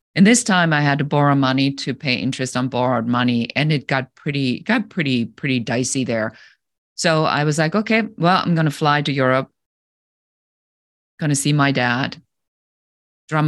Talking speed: 175 wpm